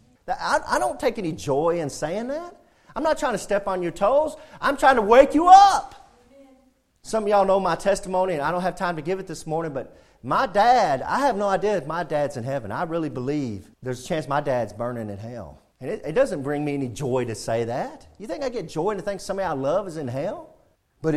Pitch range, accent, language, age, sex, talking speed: 150-220 Hz, American, English, 40-59, male, 245 wpm